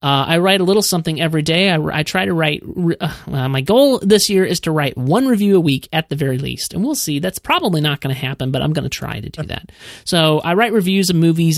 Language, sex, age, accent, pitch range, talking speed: English, male, 30-49, American, 135-180 Hz, 280 wpm